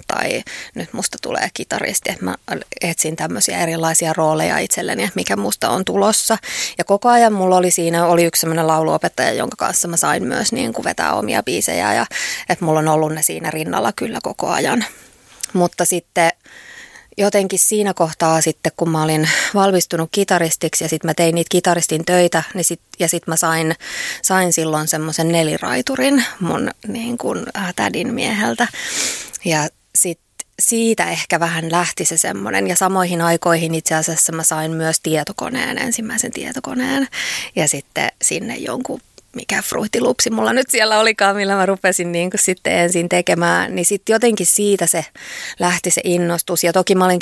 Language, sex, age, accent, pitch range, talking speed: Finnish, female, 20-39, native, 160-190 Hz, 165 wpm